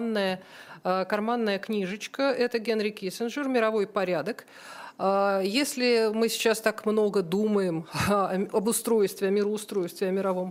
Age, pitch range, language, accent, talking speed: 40-59, 195-225 Hz, Russian, native, 110 wpm